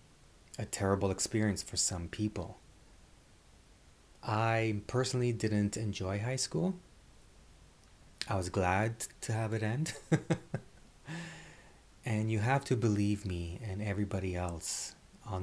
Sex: male